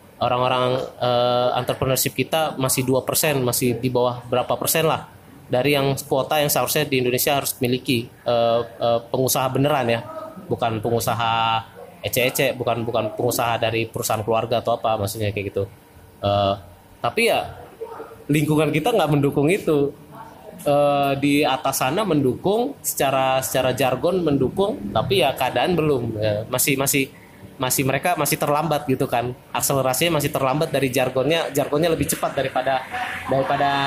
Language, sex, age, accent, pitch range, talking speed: Indonesian, male, 20-39, native, 120-150 Hz, 140 wpm